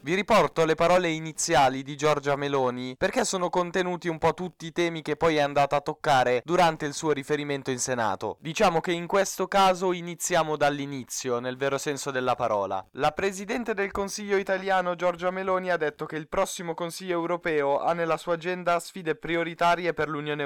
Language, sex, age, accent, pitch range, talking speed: Italian, male, 10-29, native, 140-175 Hz, 180 wpm